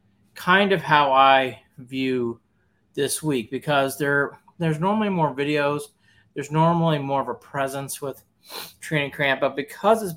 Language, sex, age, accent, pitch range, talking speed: English, male, 30-49, American, 110-150 Hz, 150 wpm